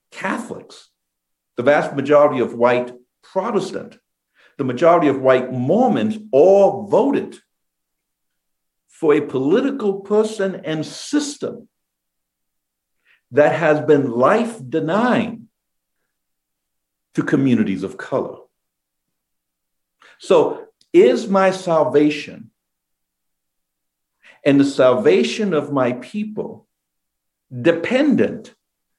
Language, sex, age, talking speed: English, male, 60-79, 80 wpm